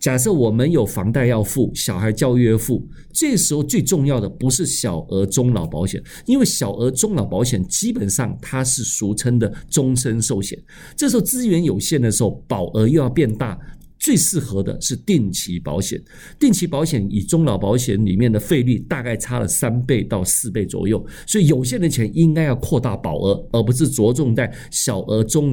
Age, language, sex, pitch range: 50-69, Chinese, male, 105-150 Hz